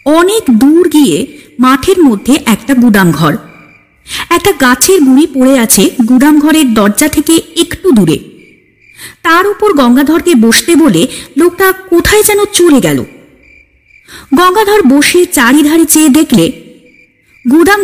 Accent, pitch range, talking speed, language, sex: native, 245-330 Hz, 110 wpm, Bengali, female